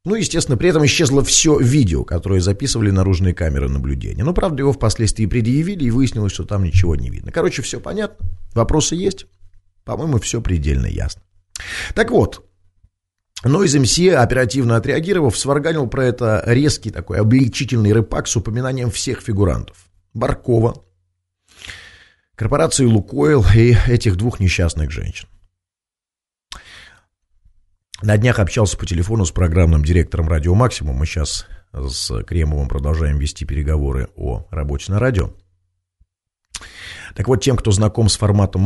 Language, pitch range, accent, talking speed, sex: Russian, 90-115 Hz, native, 135 wpm, male